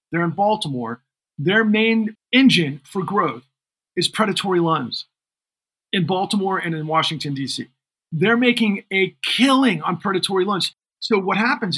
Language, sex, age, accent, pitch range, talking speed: English, male, 40-59, American, 155-200 Hz, 140 wpm